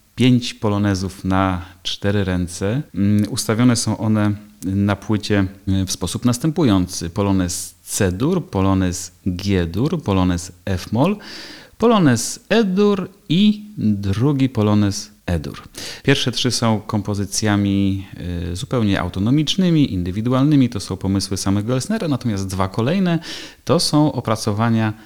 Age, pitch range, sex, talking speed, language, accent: 30-49, 95-120 Hz, male, 105 wpm, Polish, native